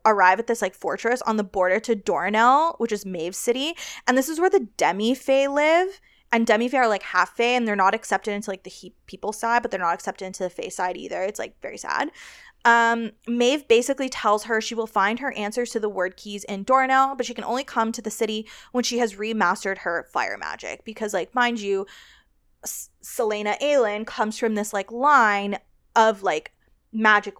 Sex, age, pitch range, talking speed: female, 20-39, 200-245 Hz, 210 wpm